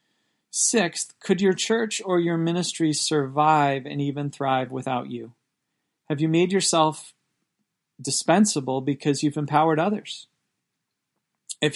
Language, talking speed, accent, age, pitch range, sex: English, 115 wpm, American, 40-59, 140-170 Hz, male